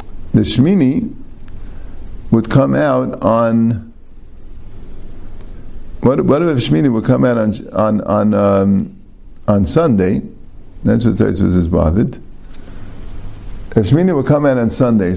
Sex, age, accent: male, 50-69, American